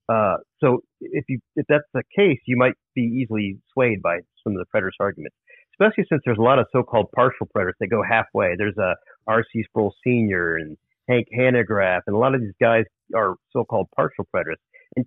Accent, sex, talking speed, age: American, male, 200 wpm, 40-59